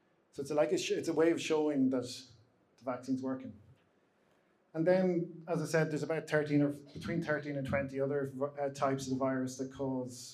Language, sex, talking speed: English, male, 215 wpm